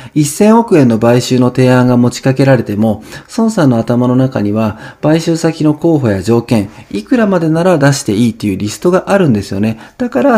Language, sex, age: Japanese, male, 40-59